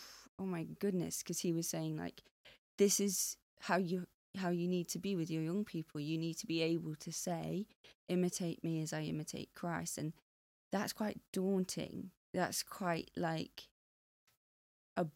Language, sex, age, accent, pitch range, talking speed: English, female, 20-39, British, 155-175 Hz, 165 wpm